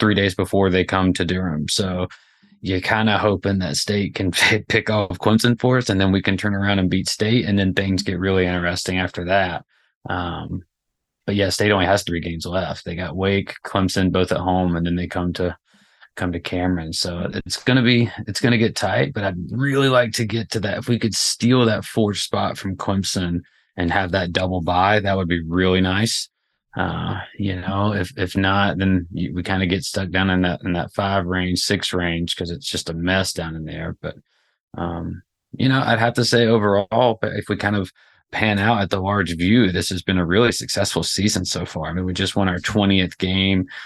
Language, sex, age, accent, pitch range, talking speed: English, male, 20-39, American, 90-105 Hz, 225 wpm